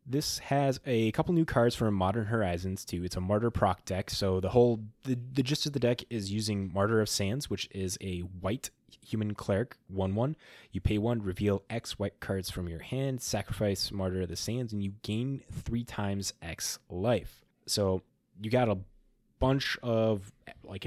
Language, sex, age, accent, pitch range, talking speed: English, male, 20-39, American, 95-115 Hz, 185 wpm